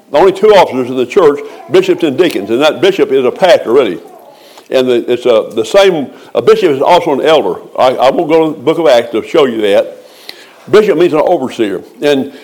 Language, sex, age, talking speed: English, male, 60-79, 230 wpm